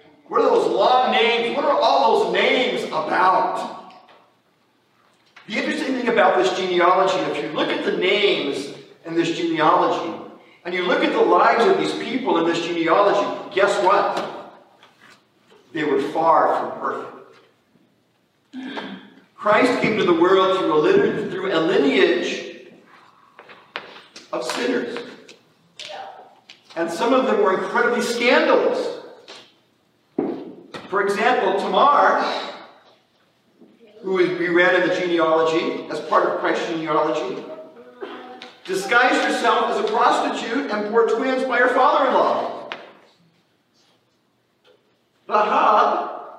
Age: 50-69